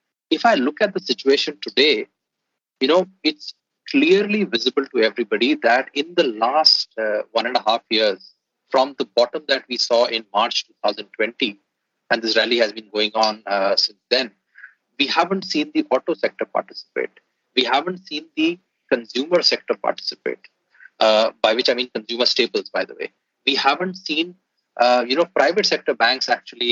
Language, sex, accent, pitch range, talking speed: English, male, Indian, 120-195 Hz, 175 wpm